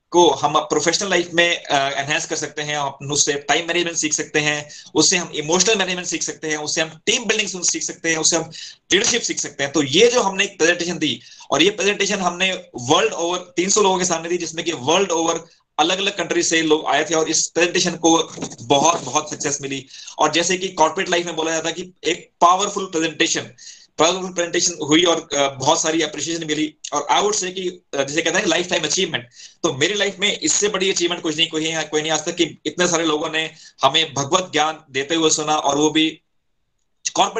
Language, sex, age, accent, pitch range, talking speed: Hindi, male, 30-49, native, 150-175 Hz, 135 wpm